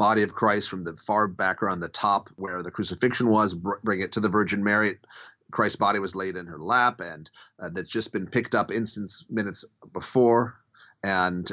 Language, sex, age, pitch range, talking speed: English, male, 30-49, 95-120 Hz, 200 wpm